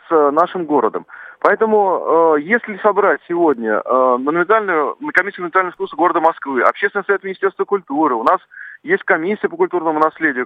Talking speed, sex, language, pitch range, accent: 130 wpm, male, Russian, 155-210 Hz, native